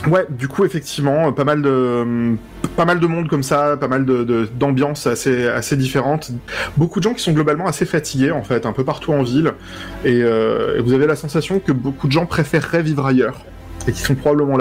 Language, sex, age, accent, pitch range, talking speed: English, male, 20-39, French, 115-155 Hz, 220 wpm